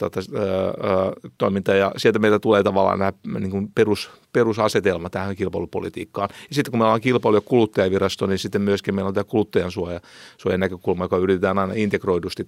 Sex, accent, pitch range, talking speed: male, native, 95-110 Hz, 160 wpm